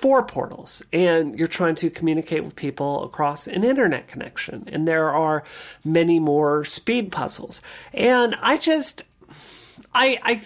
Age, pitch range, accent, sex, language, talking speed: 40-59, 150-185 Hz, American, male, English, 145 wpm